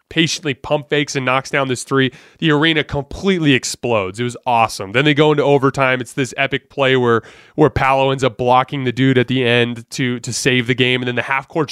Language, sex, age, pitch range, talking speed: English, male, 20-39, 120-140 Hz, 225 wpm